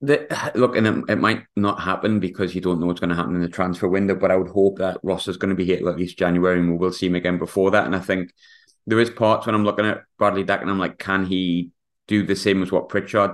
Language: English